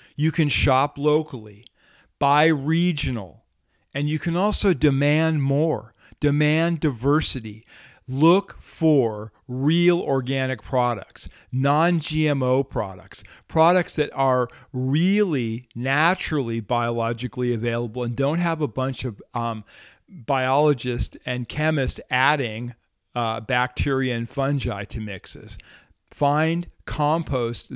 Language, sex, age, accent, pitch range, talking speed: English, male, 40-59, American, 120-155 Hz, 100 wpm